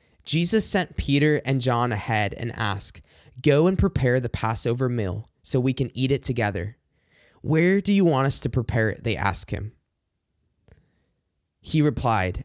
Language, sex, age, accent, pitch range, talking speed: English, male, 20-39, American, 115-145 Hz, 160 wpm